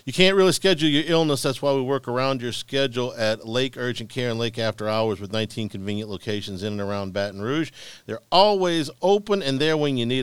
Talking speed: 225 wpm